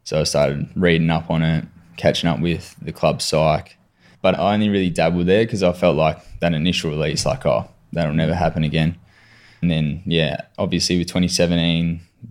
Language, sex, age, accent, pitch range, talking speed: English, male, 20-39, Australian, 80-90 Hz, 185 wpm